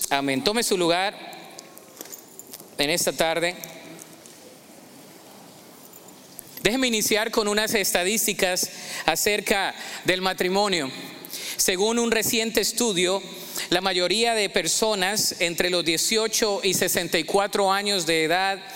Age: 40-59